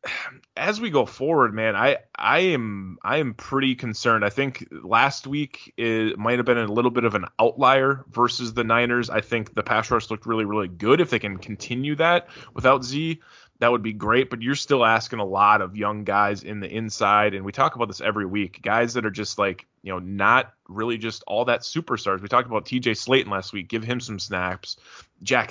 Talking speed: 220 wpm